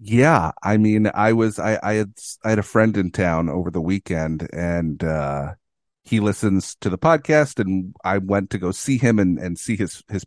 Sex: male